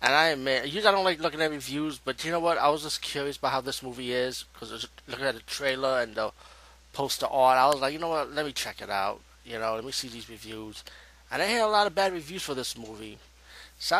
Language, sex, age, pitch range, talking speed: English, male, 20-39, 115-150 Hz, 275 wpm